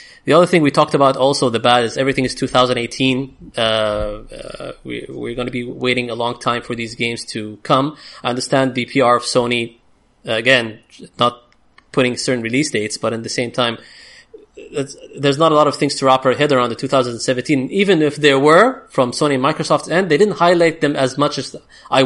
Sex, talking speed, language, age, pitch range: male, 205 wpm, English, 20-39, 125-160 Hz